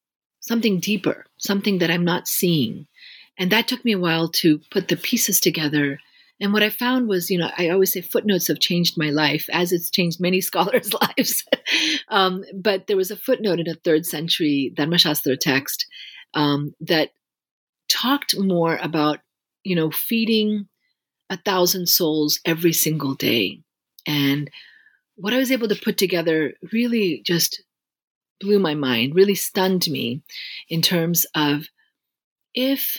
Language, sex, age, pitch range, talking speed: English, female, 40-59, 160-210 Hz, 155 wpm